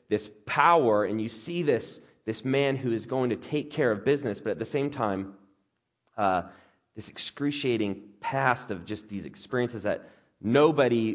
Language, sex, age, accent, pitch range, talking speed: English, male, 30-49, American, 105-135 Hz, 165 wpm